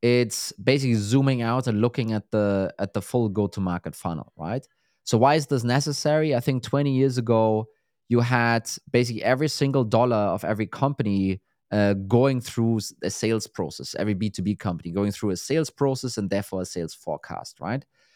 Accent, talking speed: German, 175 wpm